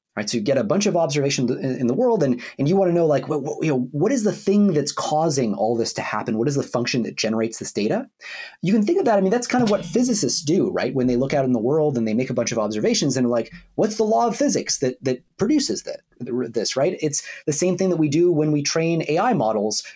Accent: American